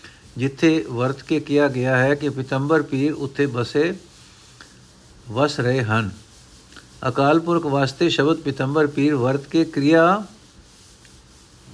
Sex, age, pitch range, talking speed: male, 60-79, 125-160 Hz, 120 wpm